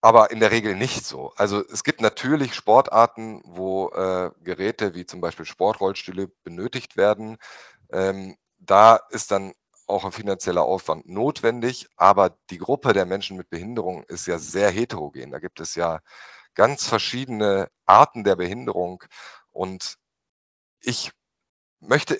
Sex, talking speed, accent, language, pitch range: male, 140 wpm, German, German, 95-115 Hz